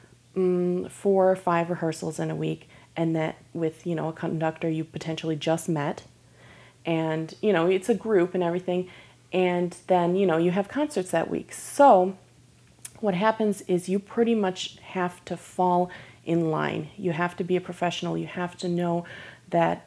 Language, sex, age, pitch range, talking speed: English, female, 30-49, 165-190 Hz, 175 wpm